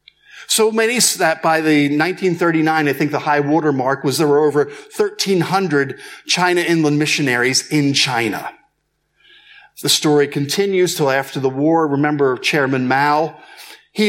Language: English